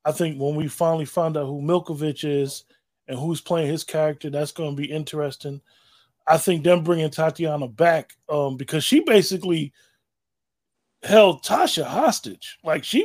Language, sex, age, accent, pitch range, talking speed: English, male, 20-39, American, 140-165 Hz, 160 wpm